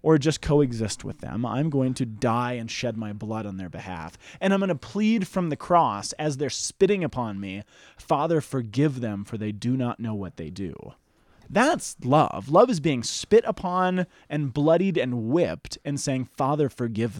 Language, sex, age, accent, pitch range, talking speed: English, male, 20-39, American, 120-165 Hz, 190 wpm